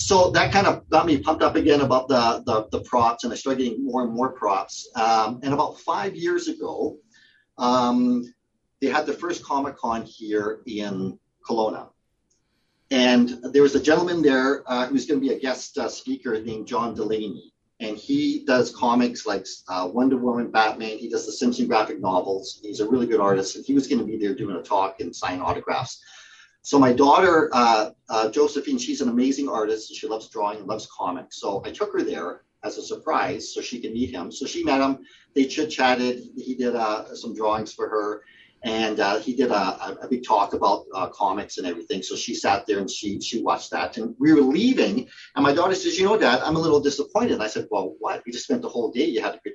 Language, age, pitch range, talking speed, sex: English, 40-59, 110-160 Hz, 220 wpm, male